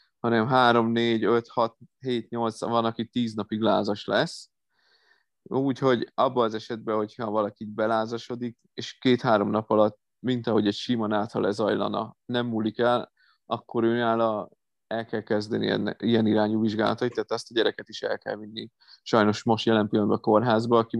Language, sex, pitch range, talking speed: Hungarian, male, 105-120 Hz, 160 wpm